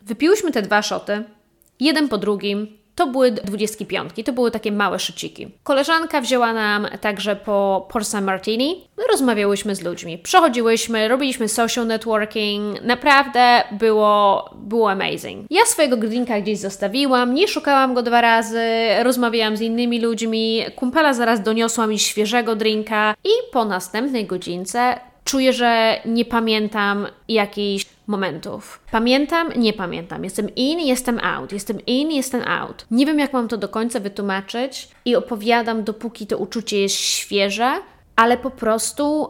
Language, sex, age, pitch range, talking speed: Polish, female, 20-39, 215-255 Hz, 140 wpm